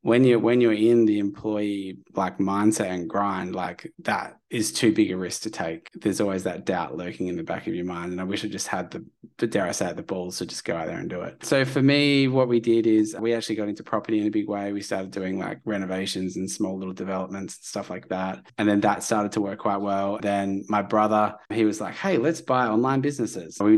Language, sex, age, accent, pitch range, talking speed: English, male, 20-39, Australian, 100-120 Hz, 255 wpm